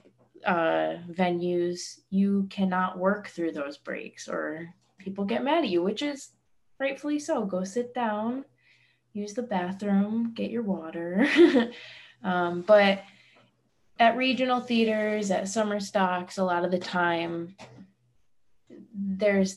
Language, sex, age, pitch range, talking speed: English, female, 20-39, 170-210 Hz, 125 wpm